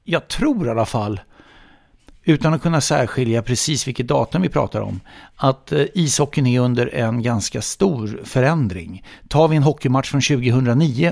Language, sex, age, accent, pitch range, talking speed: English, male, 60-79, Swedish, 120-170 Hz, 155 wpm